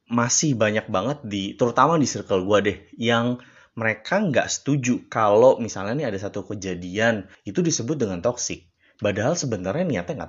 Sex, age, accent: male, 20-39, native